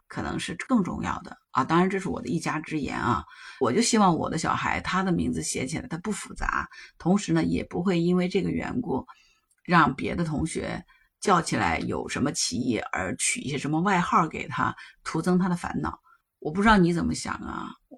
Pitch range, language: 165-240 Hz, Chinese